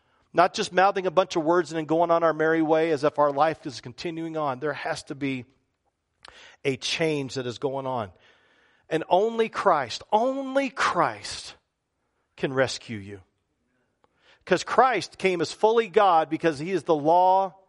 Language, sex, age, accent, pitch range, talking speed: English, male, 40-59, American, 150-190 Hz, 170 wpm